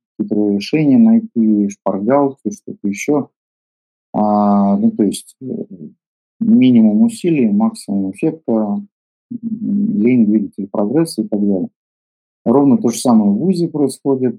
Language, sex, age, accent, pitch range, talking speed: Russian, male, 50-69, native, 100-155 Hz, 110 wpm